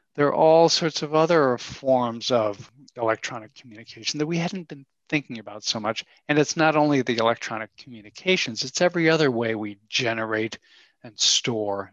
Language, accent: English, American